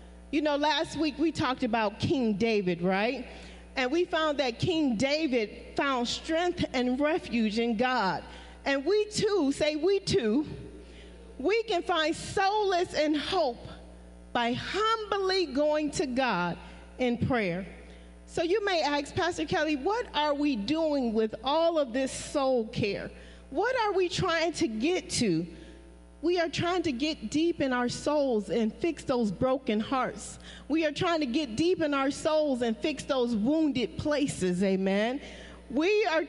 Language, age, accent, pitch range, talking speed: English, 40-59, American, 220-315 Hz, 155 wpm